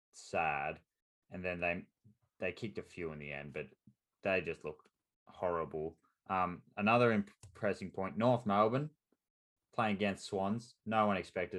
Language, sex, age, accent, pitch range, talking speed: English, male, 20-39, Australian, 80-95 Hz, 145 wpm